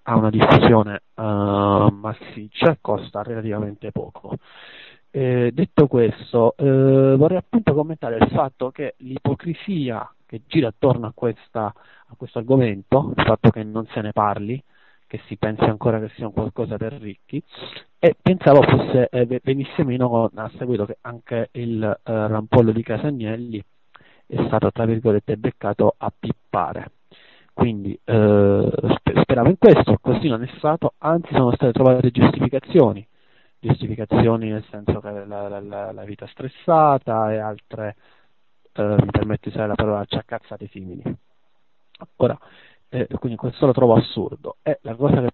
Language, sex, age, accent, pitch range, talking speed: Italian, male, 30-49, native, 110-135 Hz, 150 wpm